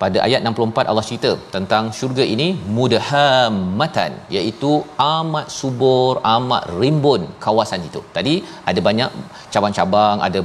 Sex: male